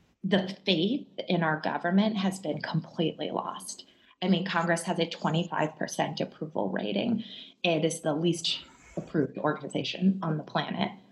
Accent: American